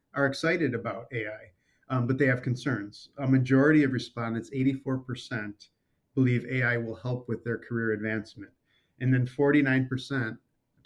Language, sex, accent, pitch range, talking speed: English, male, American, 115-135 Hz, 140 wpm